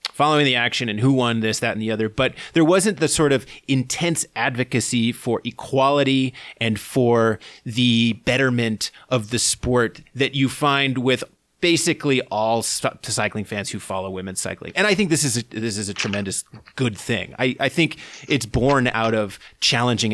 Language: English